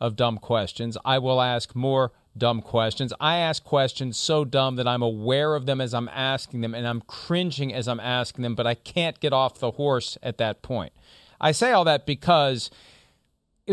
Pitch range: 125-195 Hz